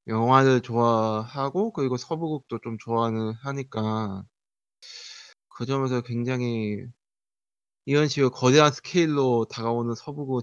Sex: male